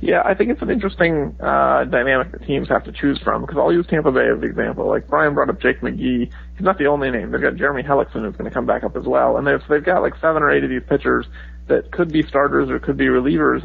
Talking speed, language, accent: 285 wpm, English, American